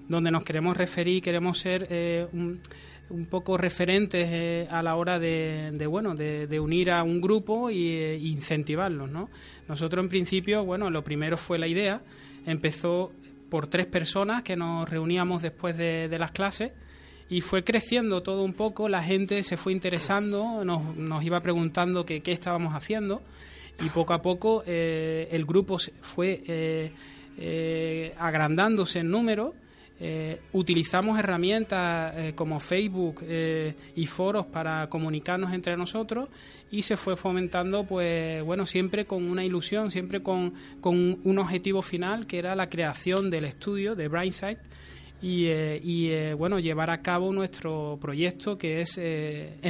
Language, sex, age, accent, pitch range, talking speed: Spanish, male, 20-39, Spanish, 160-190 Hz, 155 wpm